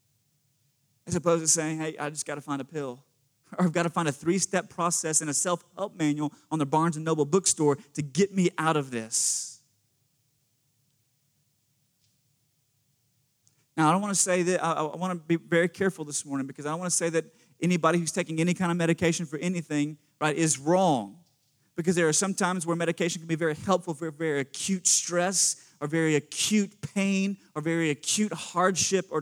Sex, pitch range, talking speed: male, 145-180 Hz, 190 wpm